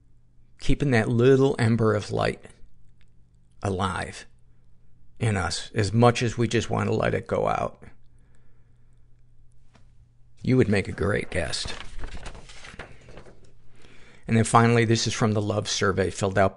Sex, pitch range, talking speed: male, 100-120 Hz, 135 wpm